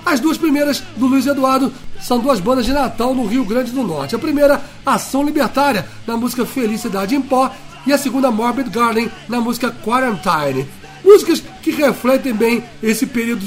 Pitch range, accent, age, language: 215-265 Hz, Brazilian, 60-79, English